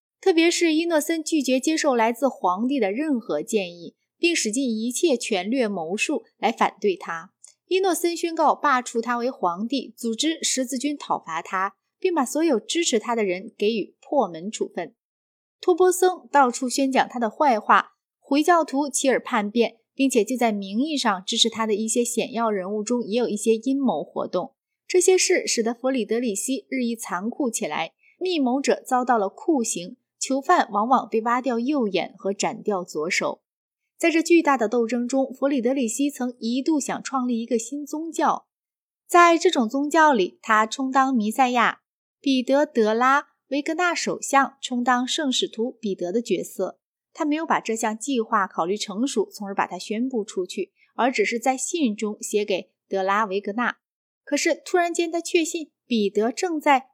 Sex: female